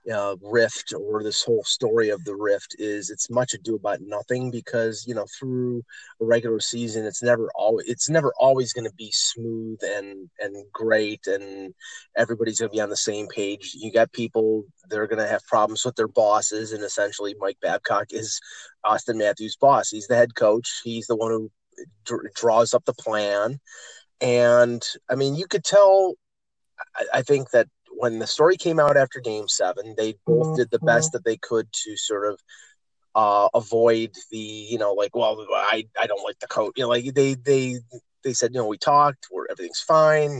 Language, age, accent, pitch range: English, 30-49, American, 105-135 Hz